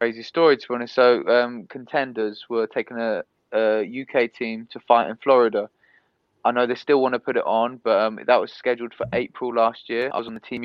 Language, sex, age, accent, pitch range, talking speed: English, male, 20-39, British, 115-130 Hz, 230 wpm